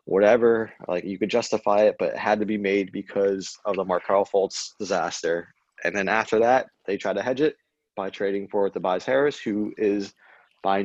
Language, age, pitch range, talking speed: English, 20-39, 100-115 Hz, 205 wpm